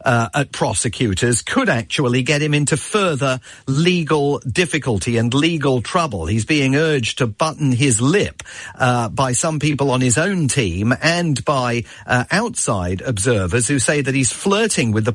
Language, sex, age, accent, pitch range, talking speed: English, male, 40-59, British, 125-160 Hz, 160 wpm